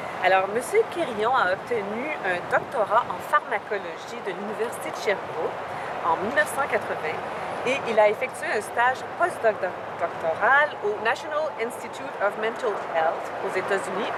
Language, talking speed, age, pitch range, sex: French, 125 wpm, 40-59, 210-290 Hz, female